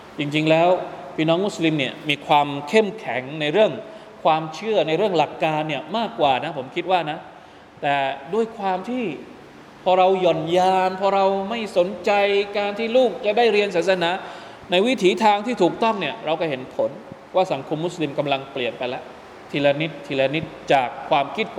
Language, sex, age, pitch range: Thai, male, 20-39, 140-230 Hz